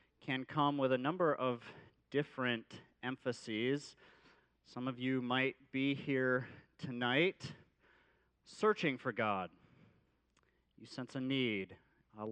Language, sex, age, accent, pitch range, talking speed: English, male, 40-59, American, 105-135 Hz, 110 wpm